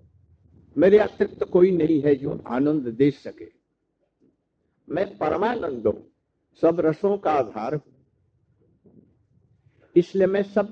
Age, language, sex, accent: 60-79, Hindi, male, native